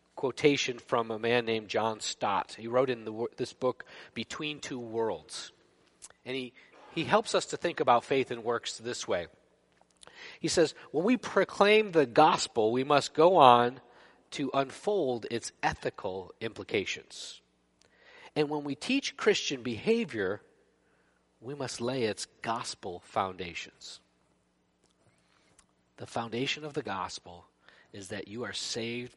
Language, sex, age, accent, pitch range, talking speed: English, male, 40-59, American, 110-155 Hz, 140 wpm